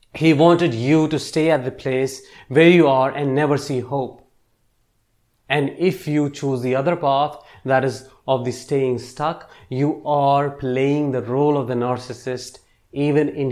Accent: Indian